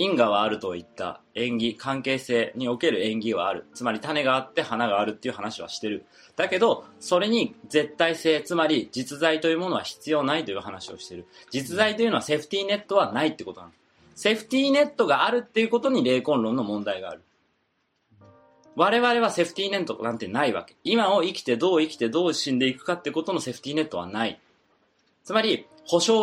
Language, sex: Japanese, male